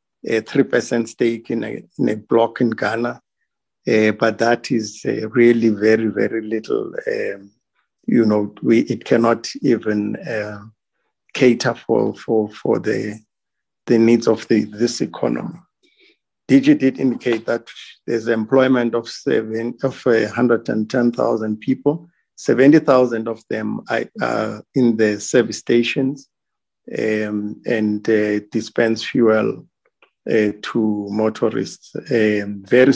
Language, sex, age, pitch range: English, male, 50-69, 110-125 Hz